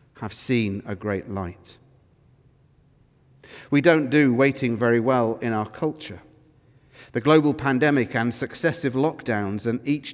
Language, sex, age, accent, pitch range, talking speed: English, male, 40-59, British, 115-145 Hz, 130 wpm